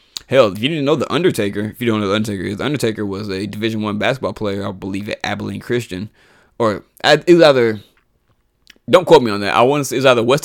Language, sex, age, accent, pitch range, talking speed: English, male, 20-39, American, 105-150 Hz, 230 wpm